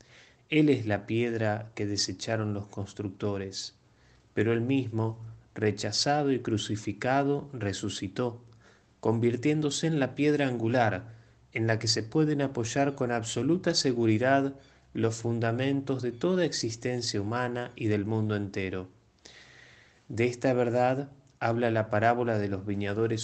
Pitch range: 105-135 Hz